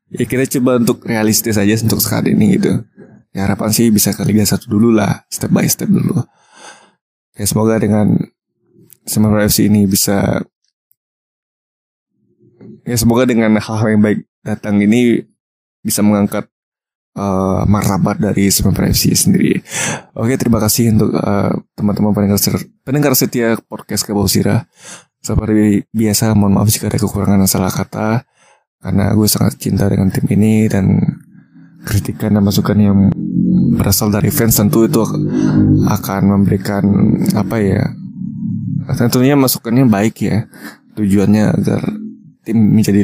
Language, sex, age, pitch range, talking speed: Indonesian, male, 20-39, 100-115 Hz, 130 wpm